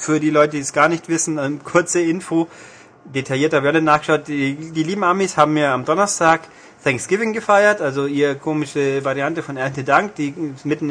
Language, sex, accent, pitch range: German, male, German, 140-170 Hz